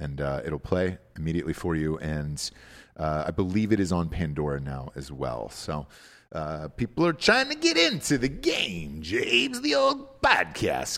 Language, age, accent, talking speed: English, 40-59, American, 175 wpm